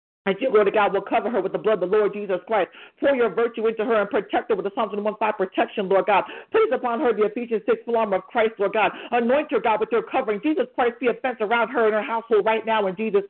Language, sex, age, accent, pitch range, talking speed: English, female, 40-59, American, 215-265 Hz, 280 wpm